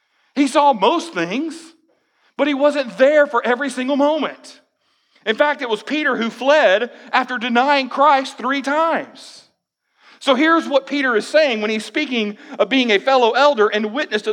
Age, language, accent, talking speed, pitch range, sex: 40-59, English, American, 170 wpm, 185-290 Hz, male